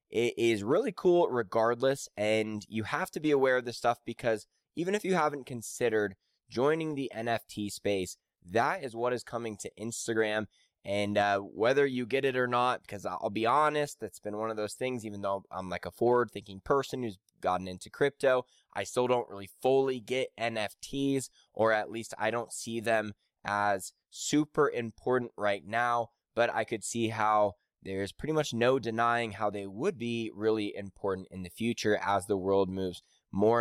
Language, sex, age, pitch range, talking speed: English, male, 20-39, 105-120 Hz, 185 wpm